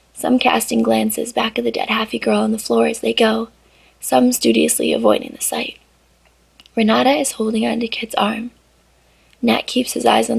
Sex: female